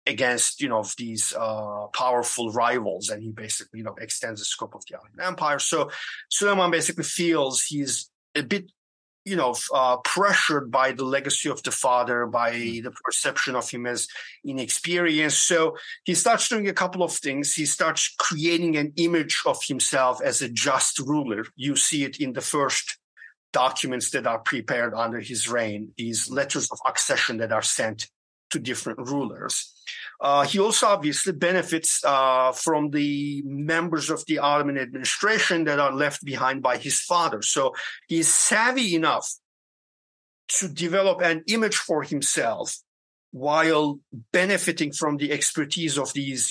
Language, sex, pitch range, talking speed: English, male, 130-165 Hz, 155 wpm